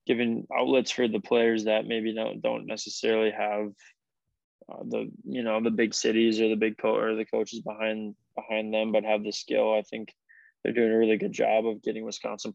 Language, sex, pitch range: English, male, 105-110 Hz